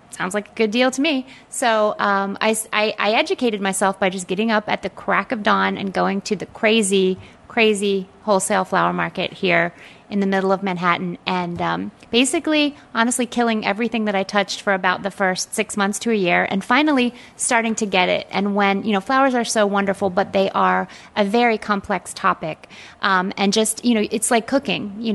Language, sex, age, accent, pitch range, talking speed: English, female, 30-49, American, 190-225 Hz, 205 wpm